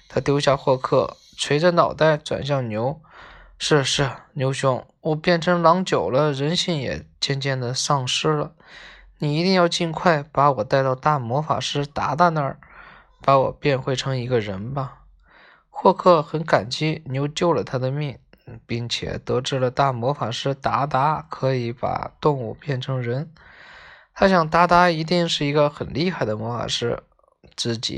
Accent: native